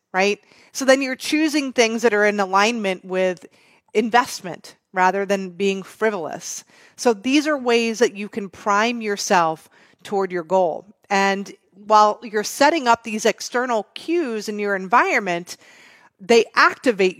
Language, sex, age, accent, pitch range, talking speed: English, female, 30-49, American, 195-245 Hz, 145 wpm